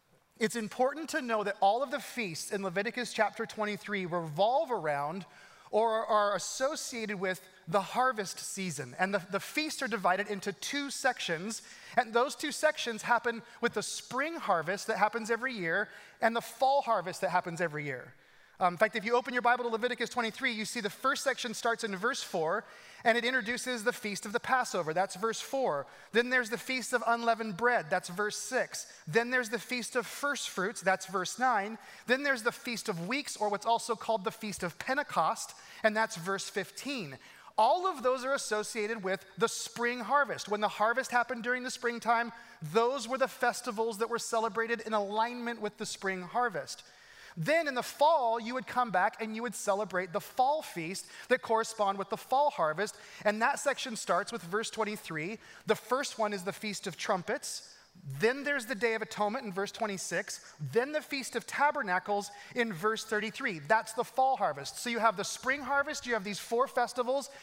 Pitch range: 205-245 Hz